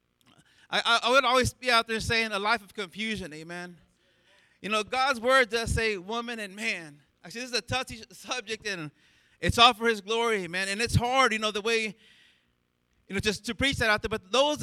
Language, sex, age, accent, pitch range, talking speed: English, male, 30-49, American, 185-240 Hz, 215 wpm